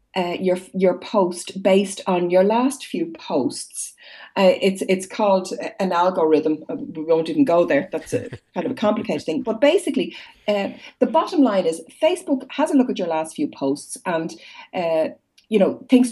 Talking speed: 185 wpm